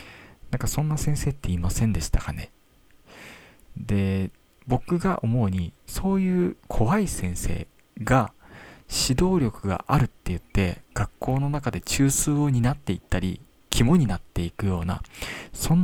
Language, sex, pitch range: Japanese, male, 90-140 Hz